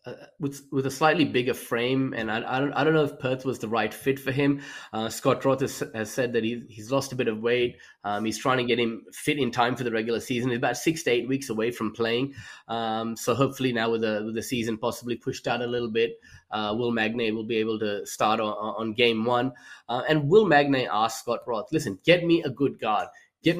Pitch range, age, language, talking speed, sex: 115-135 Hz, 20-39, English, 250 wpm, male